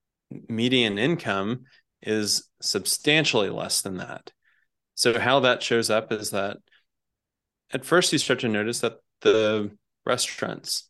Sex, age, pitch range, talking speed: male, 20-39, 105-120 Hz, 125 wpm